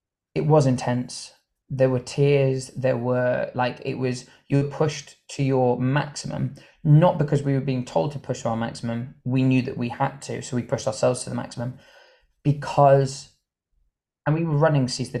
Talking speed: 190 wpm